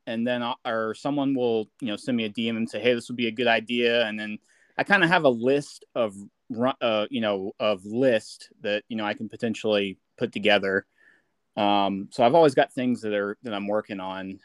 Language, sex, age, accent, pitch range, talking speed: English, male, 30-49, American, 105-120 Hz, 225 wpm